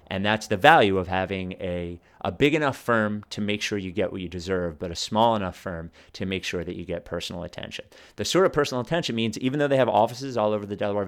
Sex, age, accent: male, 30-49, American